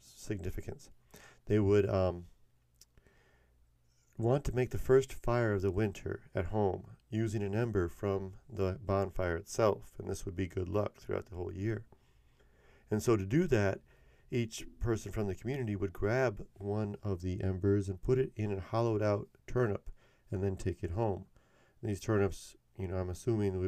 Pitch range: 95-110 Hz